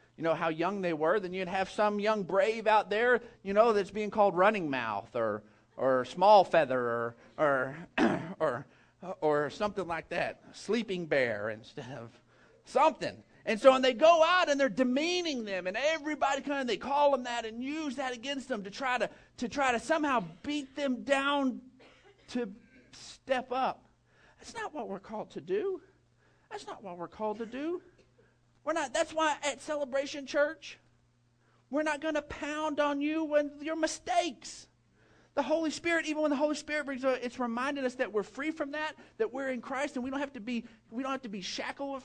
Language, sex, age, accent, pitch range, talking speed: English, male, 40-59, American, 215-290 Hz, 200 wpm